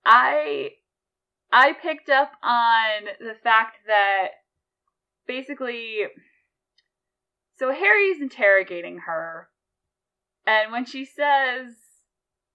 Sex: female